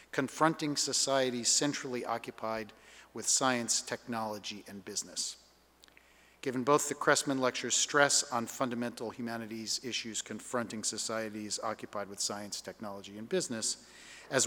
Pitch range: 110-135 Hz